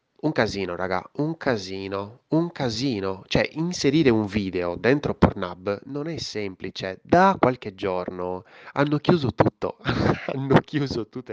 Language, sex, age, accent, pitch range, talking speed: Italian, male, 20-39, native, 95-120 Hz, 135 wpm